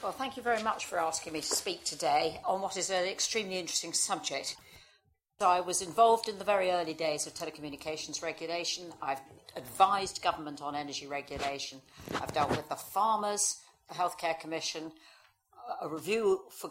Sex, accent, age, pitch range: female, British, 50-69, 150-205 Hz